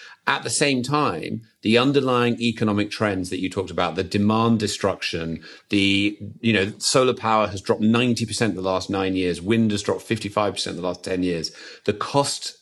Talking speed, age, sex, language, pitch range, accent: 185 wpm, 40-59, male, English, 100-120 Hz, British